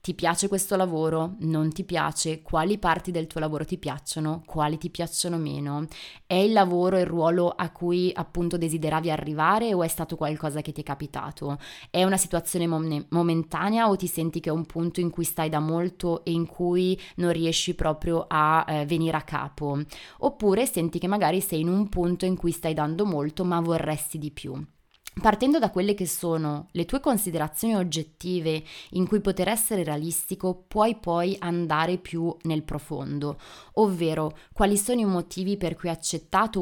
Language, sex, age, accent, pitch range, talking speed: Italian, female, 20-39, native, 160-190 Hz, 180 wpm